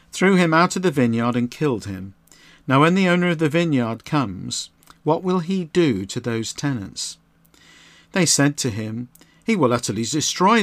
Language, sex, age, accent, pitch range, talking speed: English, male, 50-69, British, 120-160 Hz, 180 wpm